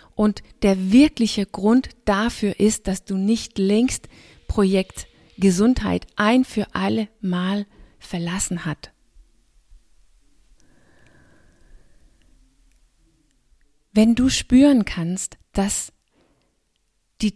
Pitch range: 190-225 Hz